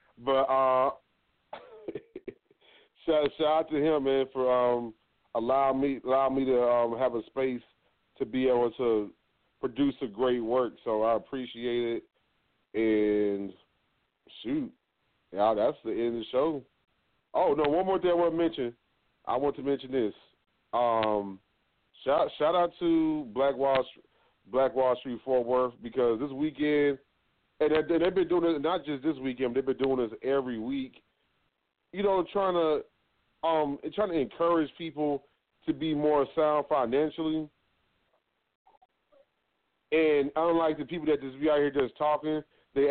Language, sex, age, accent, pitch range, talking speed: English, male, 30-49, American, 130-160 Hz, 160 wpm